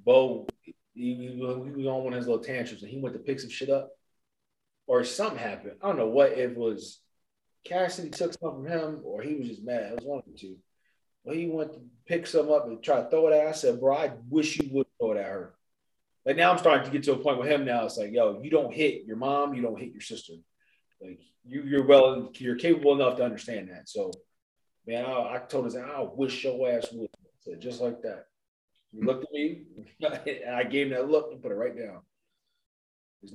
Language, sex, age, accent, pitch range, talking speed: English, male, 30-49, American, 125-160 Hz, 240 wpm